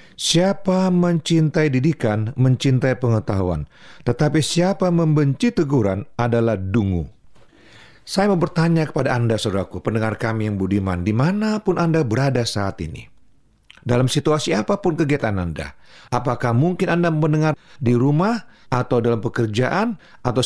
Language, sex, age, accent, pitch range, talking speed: Indonesian, male, 40-59, native, 115-160 Hz, 125 wpm